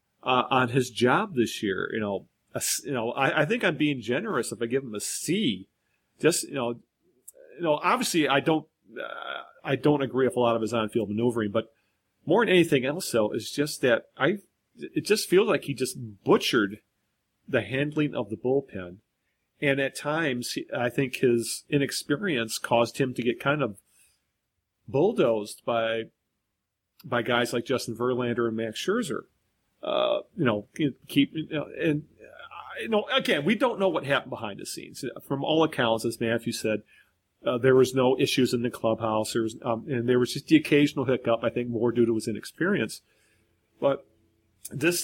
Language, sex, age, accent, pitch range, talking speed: English, male, 40-59, American, 115-145 Hz, 185 wpm